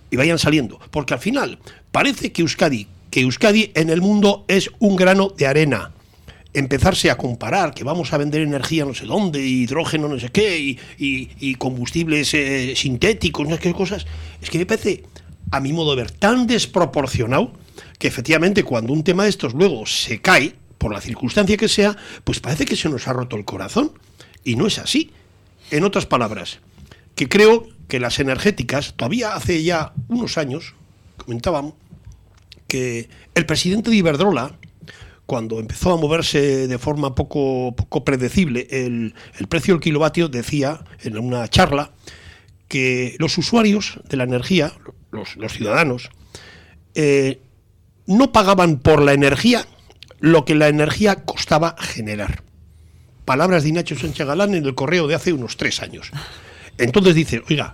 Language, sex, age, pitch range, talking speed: Spanish, male, 60-79, 120-175 Hz, 160 wpm